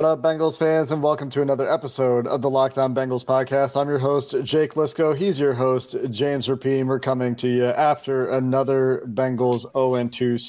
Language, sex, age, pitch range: English, male, 40-59, 125-145 Hz